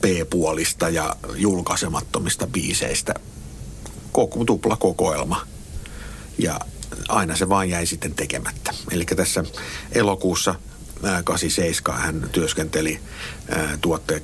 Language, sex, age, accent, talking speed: Finnish, male, 60-79, native, 90 wpm